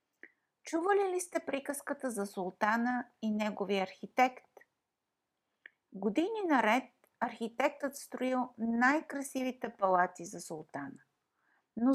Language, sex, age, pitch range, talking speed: Bulgarian, female, 50-69, 220-290 Hz, 90 wpm